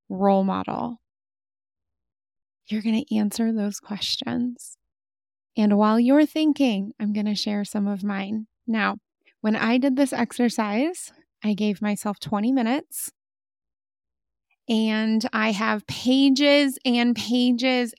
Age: 20-39